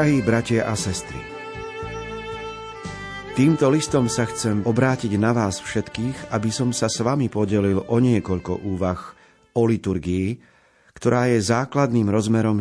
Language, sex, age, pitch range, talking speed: Slovak, male, 40-59, 95-120 Hz, 130 wpm